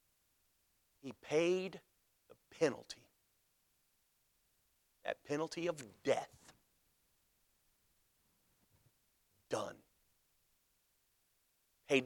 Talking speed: 50 wpm